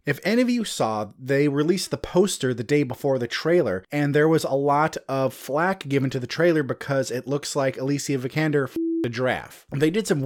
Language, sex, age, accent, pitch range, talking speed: English, male, 30-49, American, 130-165 Hz, 215 wpm